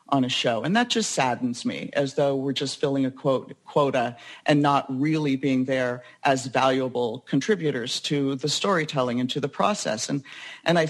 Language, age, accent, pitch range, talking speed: English, 50-69, American, 135-175 Hz, 180 wpm